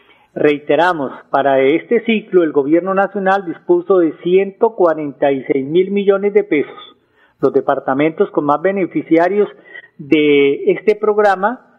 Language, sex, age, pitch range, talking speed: Spanish, male, 40-59, 155-195 Hz, 110 wpm